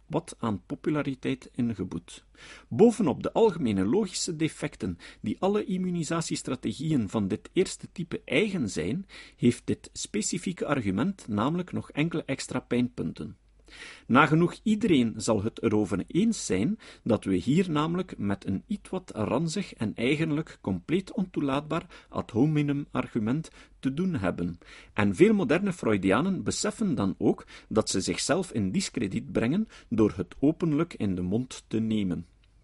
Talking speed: 135 wpm